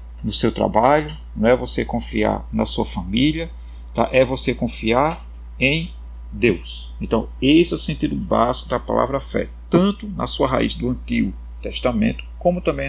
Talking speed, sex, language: 160 wpm, male, Portuguese